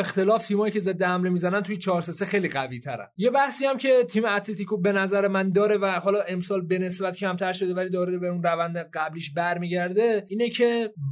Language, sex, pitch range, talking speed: Persian, male, 170-210 Hz, 200 wpm